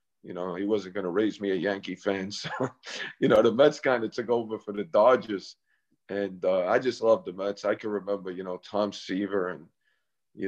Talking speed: 225 wpm